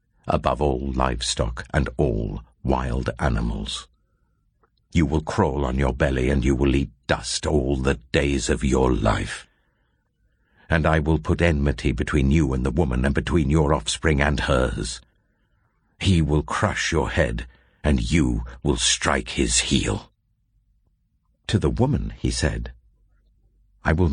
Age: 60-79